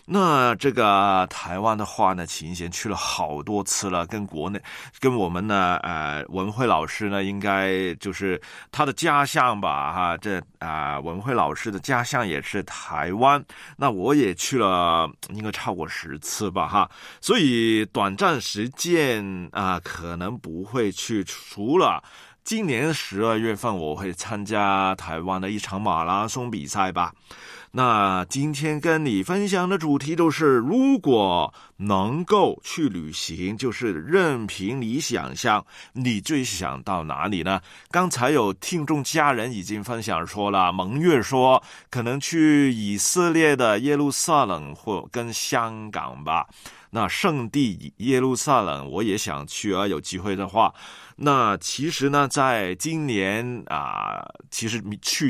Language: Chinese